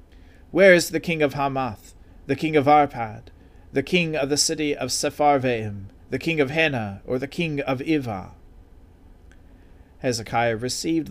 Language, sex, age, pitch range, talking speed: English, male, 40-59, 95-145 Hz, 150 wpm